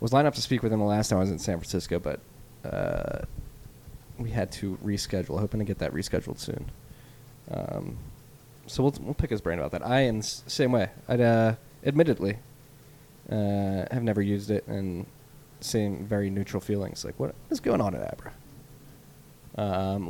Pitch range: 100-125 Hz